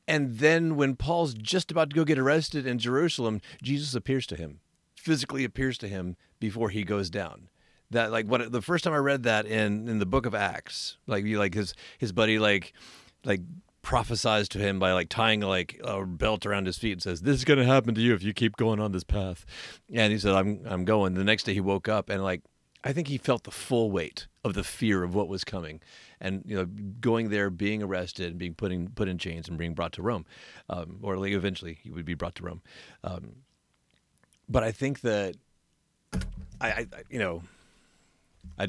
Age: 40-59